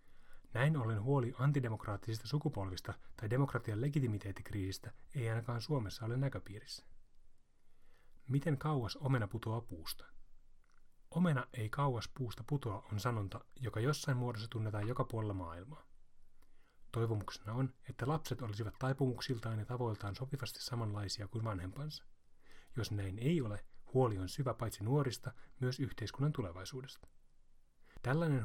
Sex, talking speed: male, 120 wpm